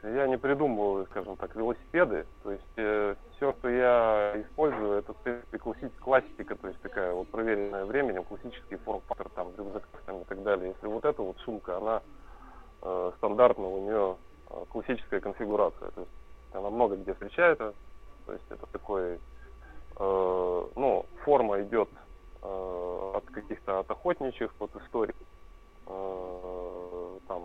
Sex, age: male, 20-39